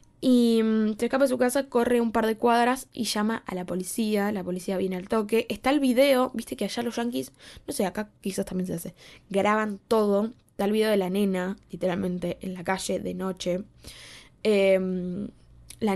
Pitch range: 185-225 Hz